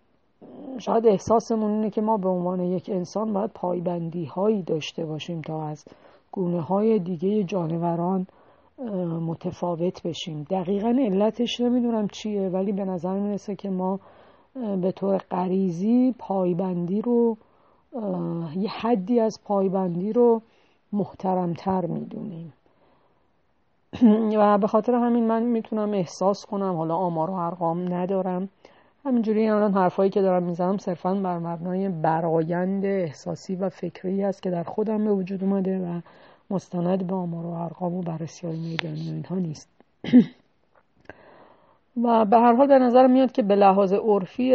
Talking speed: 130 wpm